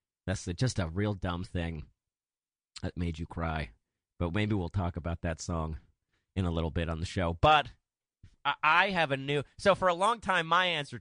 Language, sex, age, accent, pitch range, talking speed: English, male, 30-49, American, 110-165 Hz, 195 wpm